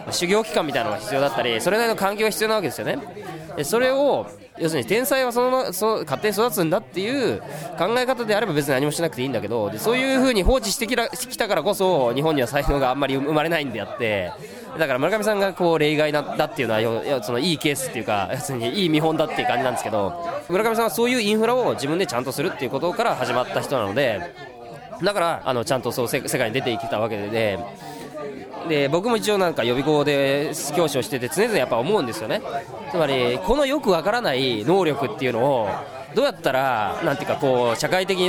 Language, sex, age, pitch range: Japanese, male, 20-39, 150-225 Hz